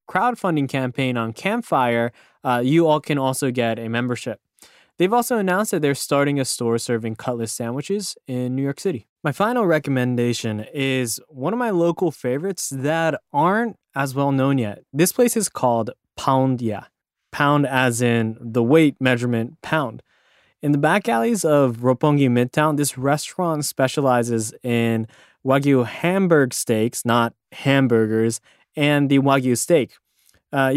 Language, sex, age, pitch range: Japanese, male, 20-39, 125-165 Hz